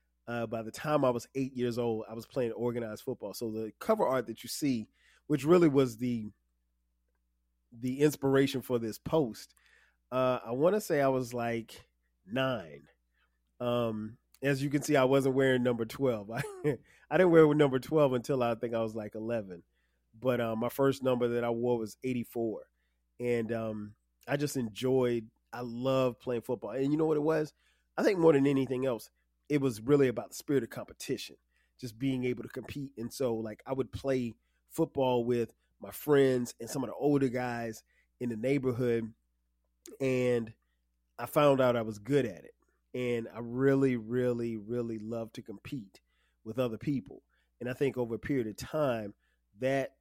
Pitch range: 110-130 Hz